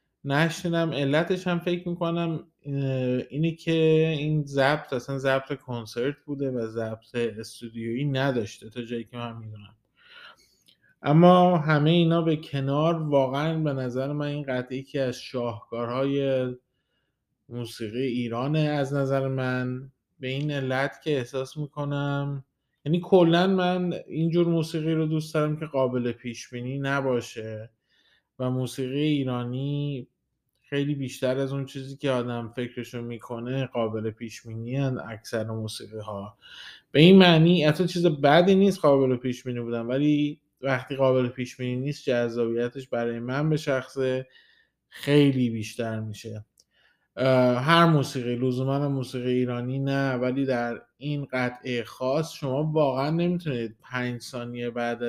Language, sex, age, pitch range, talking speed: Persian, male, 20-39, 120-145 Hz, 130 wpm